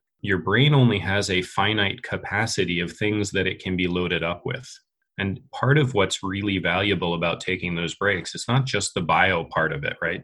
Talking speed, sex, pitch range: 205 wpm, male, 90-120 Hz